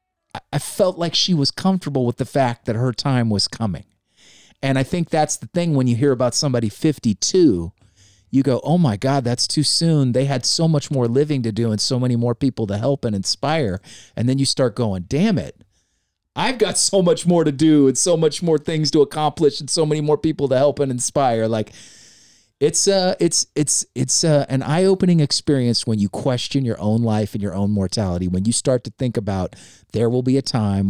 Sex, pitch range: male, 115-150 Hz